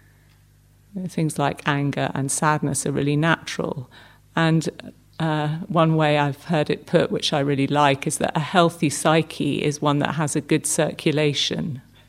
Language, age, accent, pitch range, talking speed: English, 50-69, British, 140-170 Hz, 160 wpm